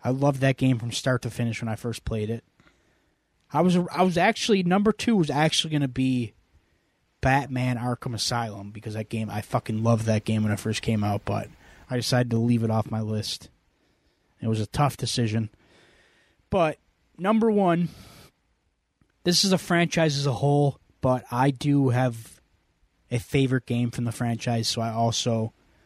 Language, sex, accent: English, male, American